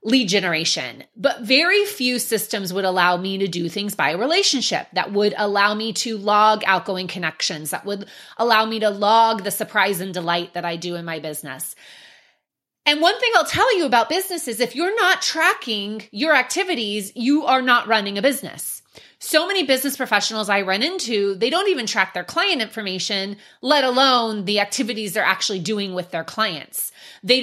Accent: American